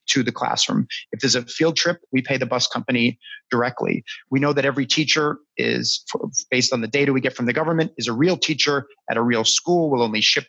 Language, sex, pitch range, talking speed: English, male, 130-160 Hz, 230 wpm